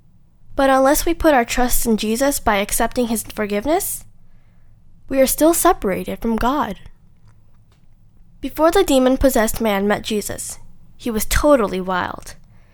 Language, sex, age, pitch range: Korean, female, 10-29, 210-290 Hz